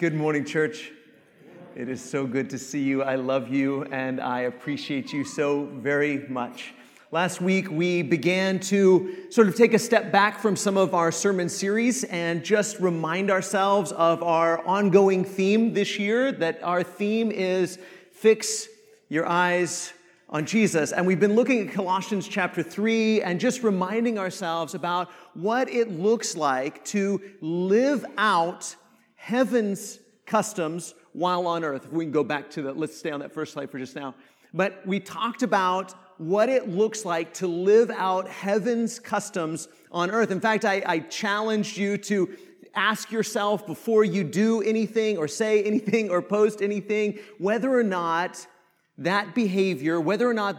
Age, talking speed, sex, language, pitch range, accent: 40-59, 165 wpm, male, English, 165-215 Hz, American